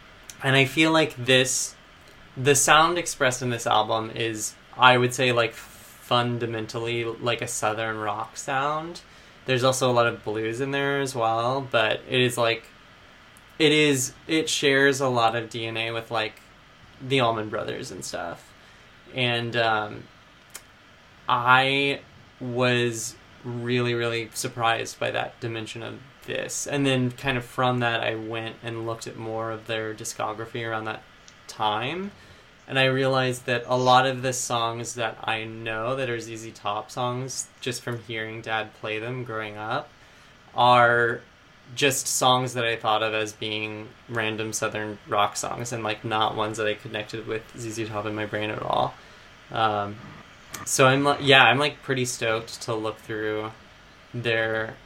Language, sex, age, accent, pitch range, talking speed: English, male, 20-39, American, 110-130 Hz, 160 wpm